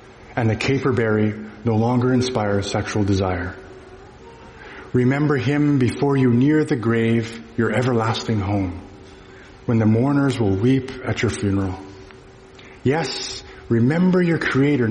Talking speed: 125 wpm